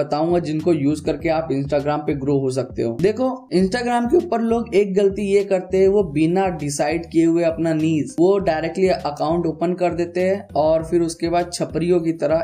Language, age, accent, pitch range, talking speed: Hindi, 10-29, native, 145-180 Hz, 95 wpm